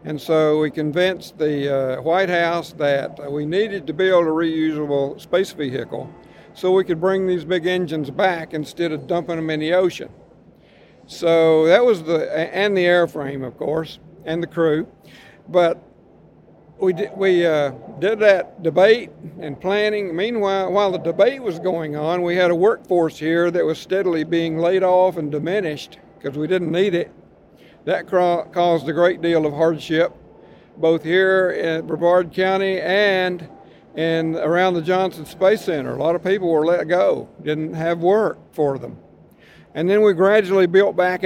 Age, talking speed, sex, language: 60-79, 165 wpm, male, English